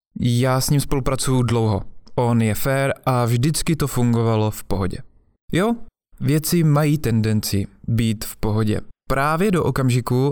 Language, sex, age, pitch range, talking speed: Czech, male, 20-39, 115-150 Hz, 140 wpm